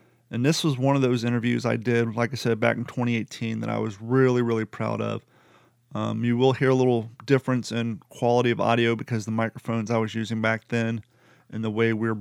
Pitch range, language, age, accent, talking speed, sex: 115-125 Hz, English, 40-59, American, 230 wpm, male